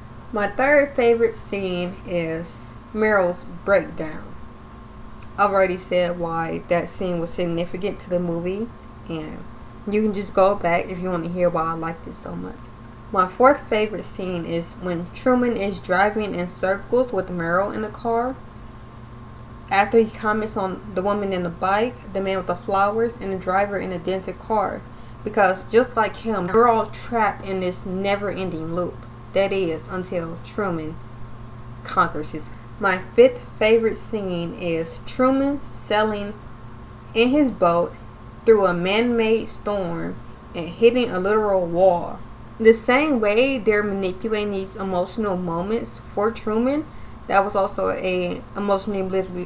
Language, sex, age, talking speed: English, female, 20-39, 150 wpm